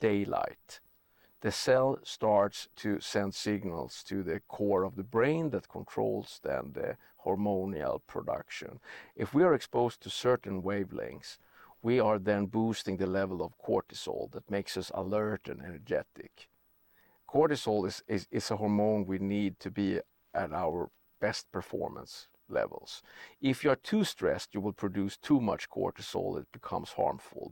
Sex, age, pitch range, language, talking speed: male, 50-69, 100-120 Hz, English, 150 wpm